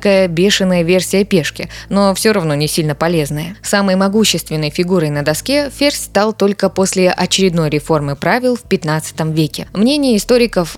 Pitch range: 160-205 Hz